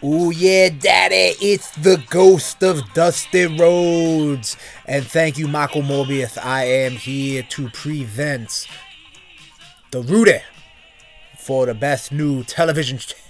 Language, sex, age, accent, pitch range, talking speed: English, male, 30-49, American, 115-165 Hz, 115 wpm